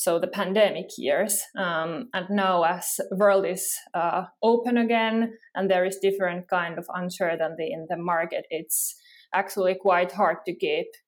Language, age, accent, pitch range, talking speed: English, 20-39, Finnish, 180-225 Hz, 160 wpm